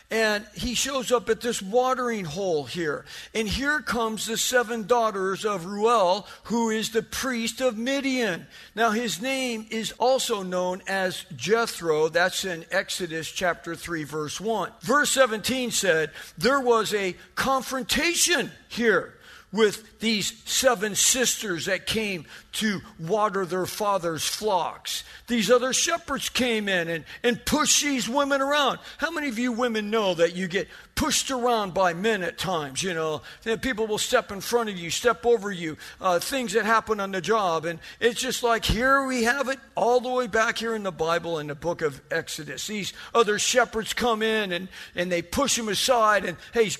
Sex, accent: male, American